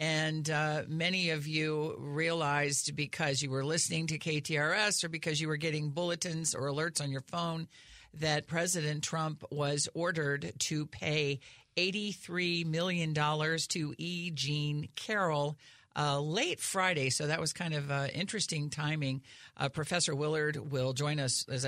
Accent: American